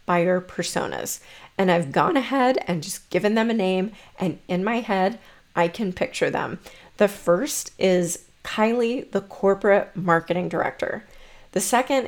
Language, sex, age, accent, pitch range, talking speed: English, female, 30-49, American, 175-210 Hz, 150 wpm